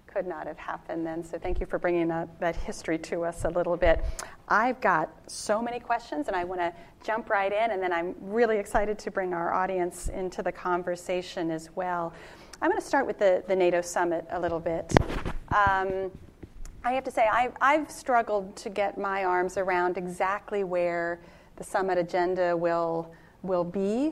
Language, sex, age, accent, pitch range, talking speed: English, female, 30-49, American, 180-220 Hz, 190 wpm